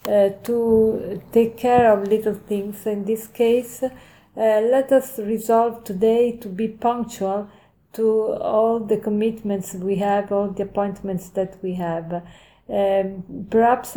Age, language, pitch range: 40-59, English, 195-225 Hz